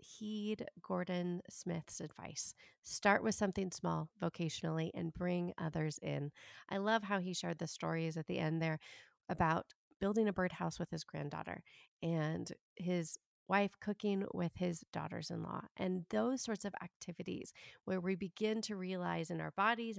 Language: English